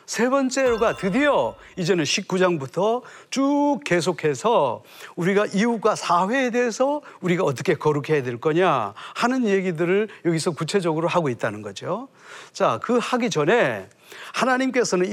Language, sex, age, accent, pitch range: Korean, male, 40-59, native, 175-245 Hz